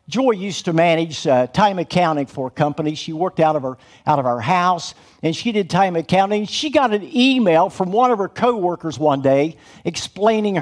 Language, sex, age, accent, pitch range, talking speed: English, male, 50-69, American, 160-225 Hz, 205 wpm